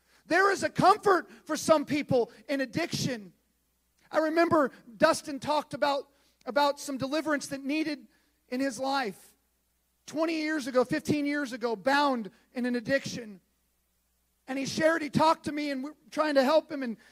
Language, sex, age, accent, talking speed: English, male, 40-59, American, 160 wpm